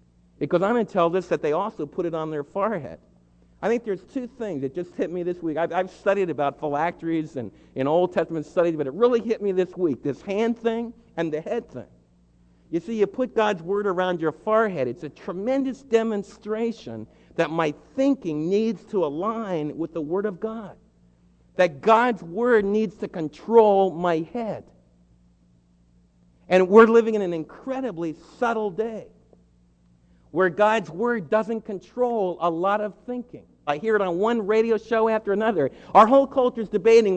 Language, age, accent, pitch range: English, 50-69, American, 150-225 Hz